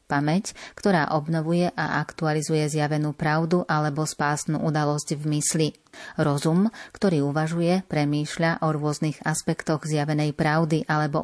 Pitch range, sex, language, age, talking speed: 150-165 Hz, female, Slovak, 30-49, 115 wpm